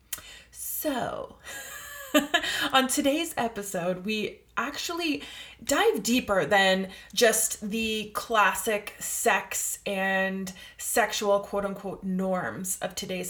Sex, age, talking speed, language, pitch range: female, 20-39, 90 wpm, English, 190-235 Hz